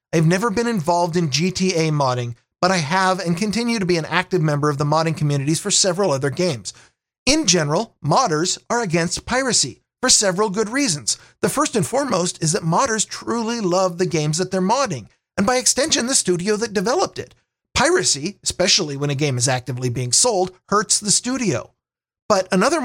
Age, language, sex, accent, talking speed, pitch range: 40-59, English, male, American, 185 wpm, 150-200 Hz